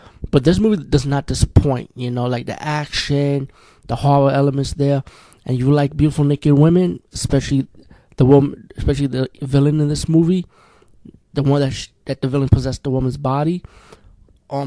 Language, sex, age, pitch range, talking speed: English, male, 20-39, 130-145 Hz, 170 wpm